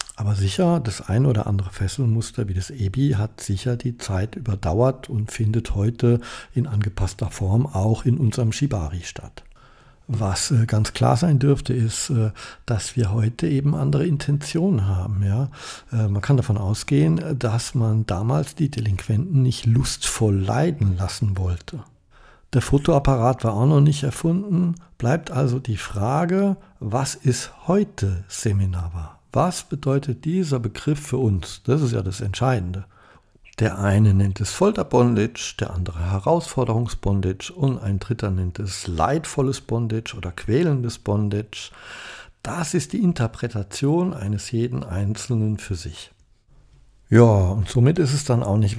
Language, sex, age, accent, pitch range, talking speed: German, male, 60-79, German, 100-135 Hz, 140 wpm